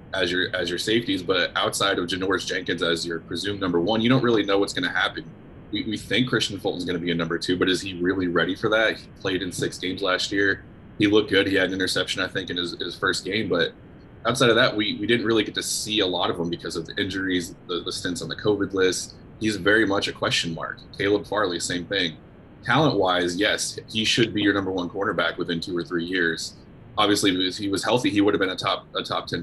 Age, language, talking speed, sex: 20-39, English, 260 wpm, male